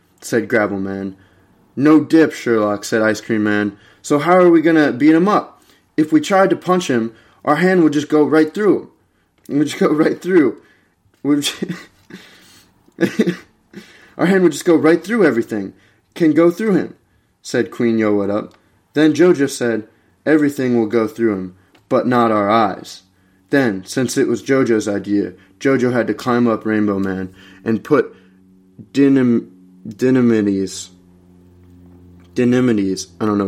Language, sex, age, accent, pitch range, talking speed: English, male, 20-39, American, 100-150 Hz, 160 wpm